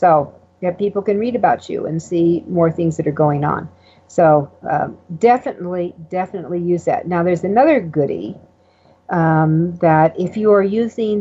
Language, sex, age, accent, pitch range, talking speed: English, female, 50-69, American, 160-190 Hz, 165 wpm